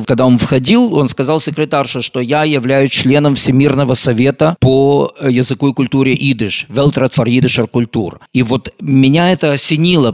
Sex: male